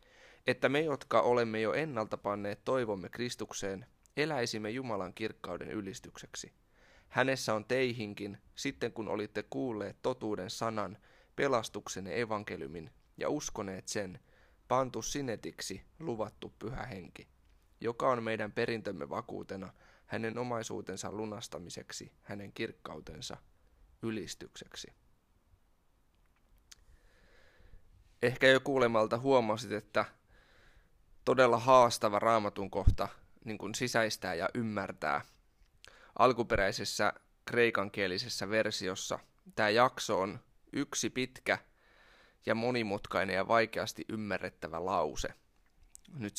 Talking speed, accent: 90 wpm, native